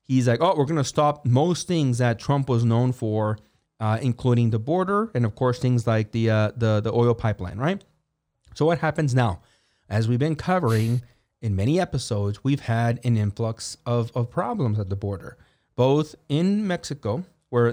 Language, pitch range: English, 115-145 Hz